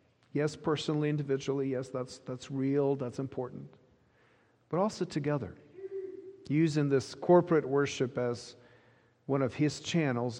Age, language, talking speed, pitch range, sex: 40-59, English, 120 wpm, 120-150 Hz, male